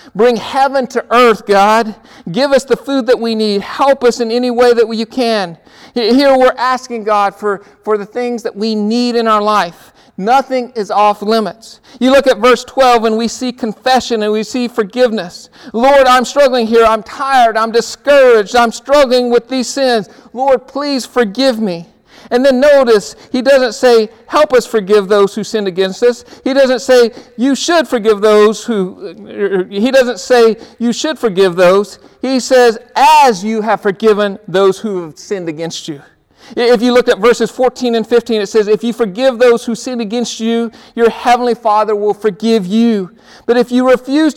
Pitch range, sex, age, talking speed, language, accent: 215-250 Hz, male, 50-69, 185 wpm, English, American